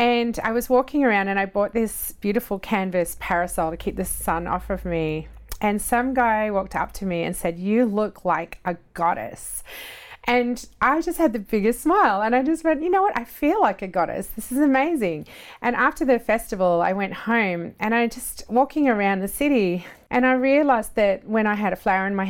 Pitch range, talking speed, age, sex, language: 190-255 Hz, 215 wpm, 30-49, female, English